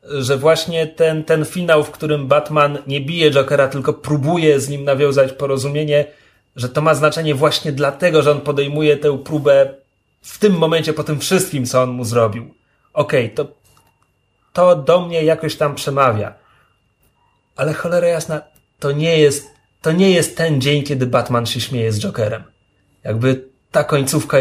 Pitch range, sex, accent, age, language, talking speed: 130-175 Hz, male, native, 30-49, Polish, 165 wpm